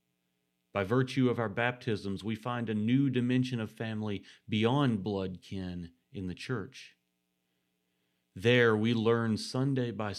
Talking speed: 135 wpm